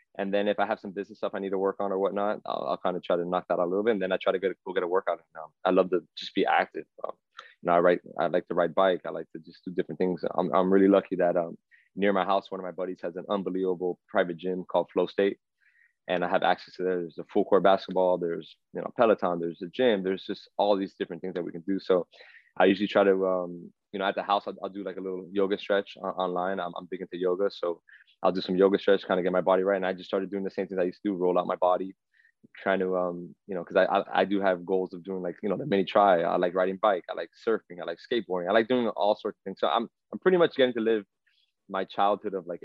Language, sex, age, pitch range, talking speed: English, male, 20-39, 90-100 Hz, 295 wpm